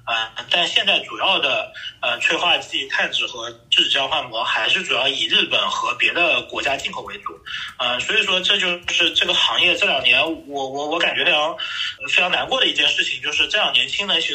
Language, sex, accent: Chinese, male, native